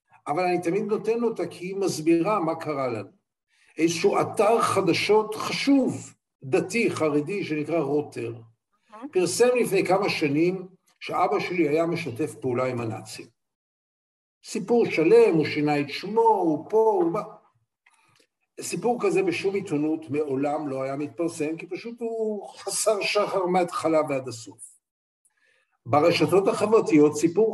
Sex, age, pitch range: male, 60-79, 155-220 Hz